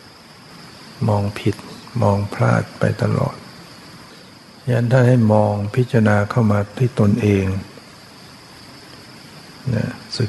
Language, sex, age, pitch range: Thai, male, 60-79, 105-120 Hz